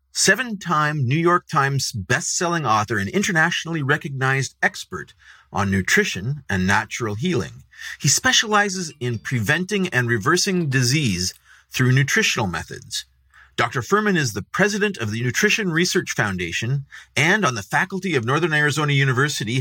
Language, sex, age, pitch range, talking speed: English, male, 30-49, 120-175 Hz, 130 wpm